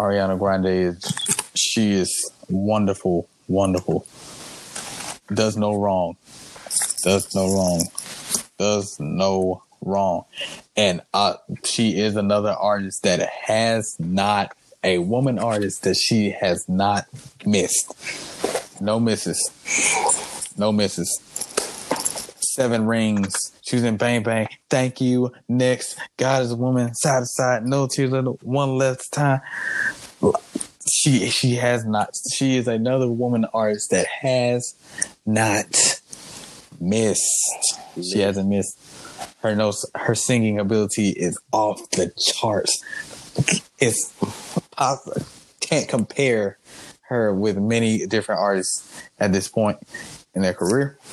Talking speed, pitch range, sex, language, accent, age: 115 wpm, 100-125 Hz, male, English, American, 20-39